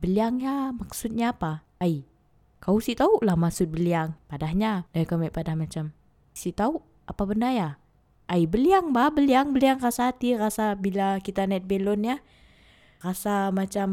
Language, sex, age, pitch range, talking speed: Indonesian, female, 20-39, 175-240 Hz, 155 wpm